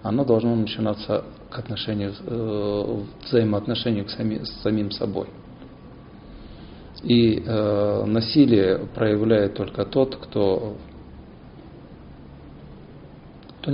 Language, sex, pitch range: Russian, male, 100-130 Hz